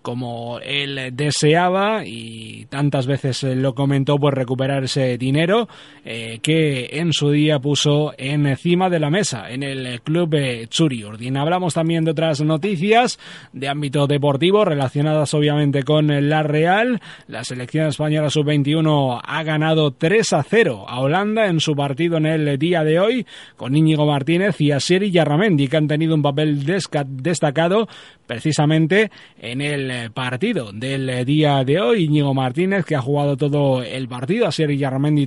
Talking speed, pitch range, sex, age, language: 155 wpm, 140-165 Hz, male, 30-49, Spanish